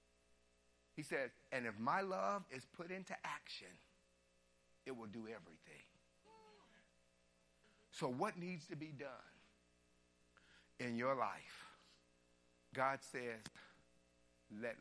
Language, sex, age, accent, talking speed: English, male, 50-69, American, 105 wpm